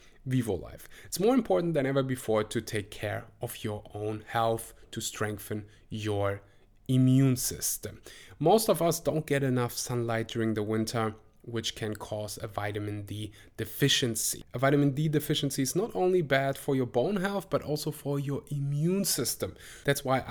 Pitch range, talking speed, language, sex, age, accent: 115-140 Hz, 170 wpm, English, male, 20-39, German